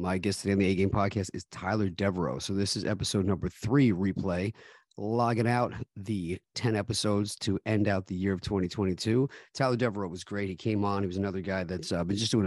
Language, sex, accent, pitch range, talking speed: English, male, American, 95-110 Hz, 215 wpm